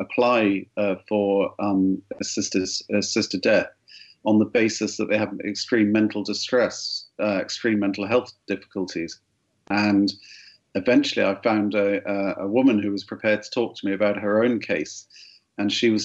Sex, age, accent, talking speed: male, 50-69, British, 160 wpm